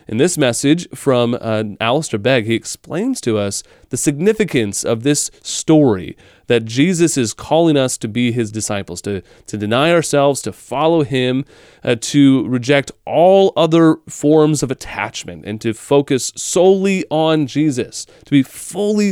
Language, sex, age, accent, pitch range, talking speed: English, male, 30-49, American, 120-175 Hz, 155 wpm